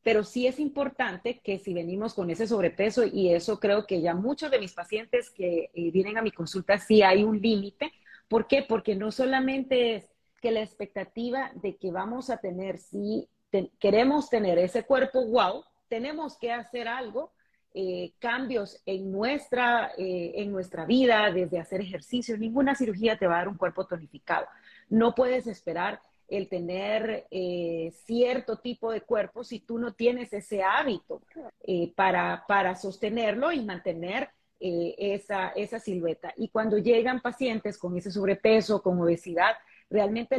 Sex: female